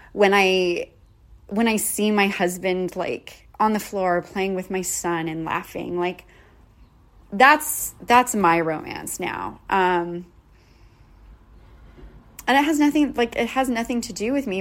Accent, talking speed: American, 150 wpm